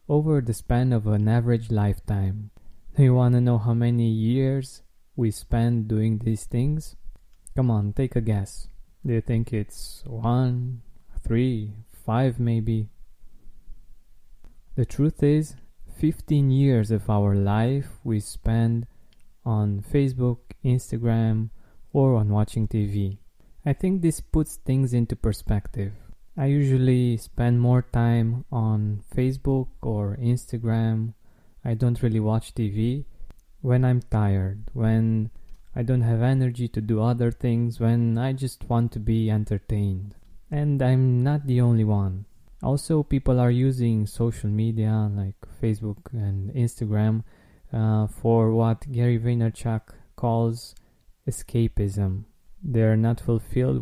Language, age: English, 20-39